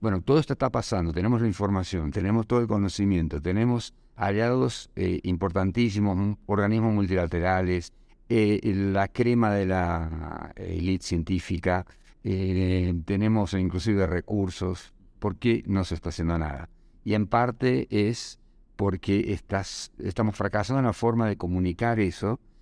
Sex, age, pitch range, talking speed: male, 50-69, 90-110 Hz, 135 wpm